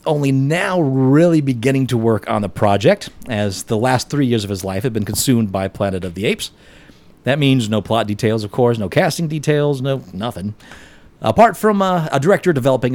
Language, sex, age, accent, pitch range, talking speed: English, male, 40-59, American, 110-150 Hz, 200 wpm